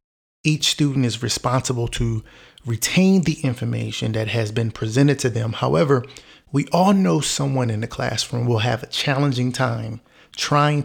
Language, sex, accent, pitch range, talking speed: English, male, American, 115-145 Hz, 155 wpm